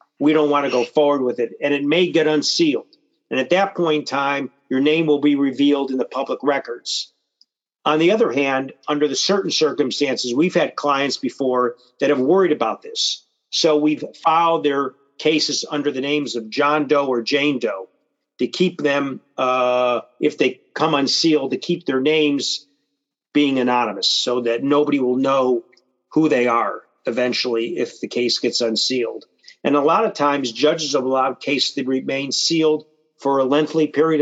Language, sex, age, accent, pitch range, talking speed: English, male, 50-69, American, 130-155 Hz, 180 wpm